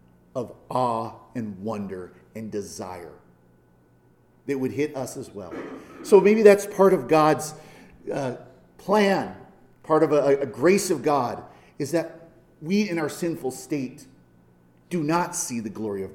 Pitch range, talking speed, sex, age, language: 115-180 Hz, 150 wpm, male, 40-59, English